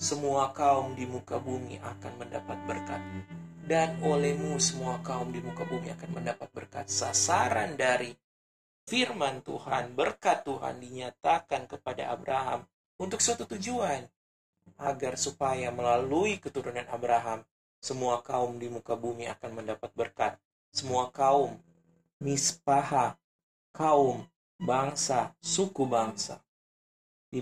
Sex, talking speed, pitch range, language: male, 110 wpm, 115-140 Hz, Indonesian